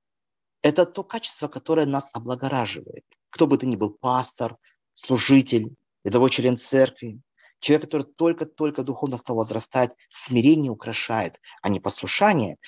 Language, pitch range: Russian, 115-160 Hz